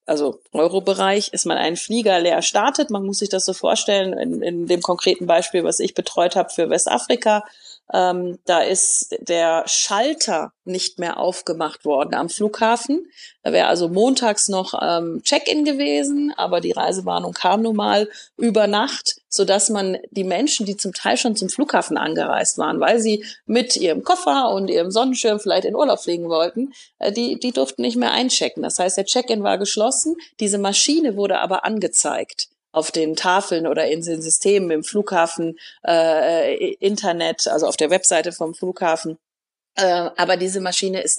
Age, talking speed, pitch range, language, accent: 30-49, 170 wpm, 175-215 Hz, German, German